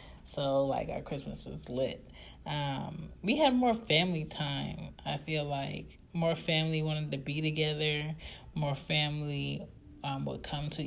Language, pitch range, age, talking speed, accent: English, 135-160 Hz, 20-39, 150 wpm, American